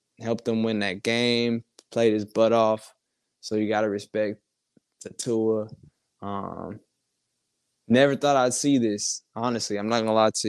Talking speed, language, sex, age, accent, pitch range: 165 wpm, English, male, 20-39, American, 110-125 Hz